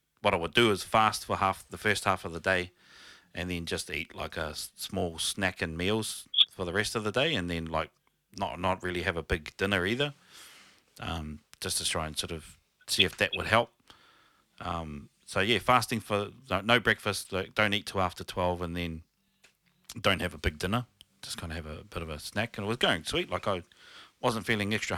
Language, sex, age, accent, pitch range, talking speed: English, male, 30-49, Australian, 90-105 Hz, 225 wpm